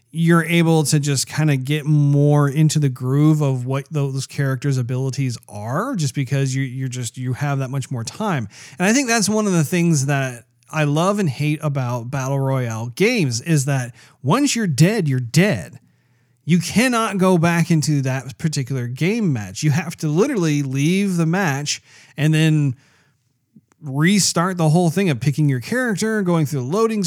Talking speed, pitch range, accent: 180 wpm, 135-170 Hz, American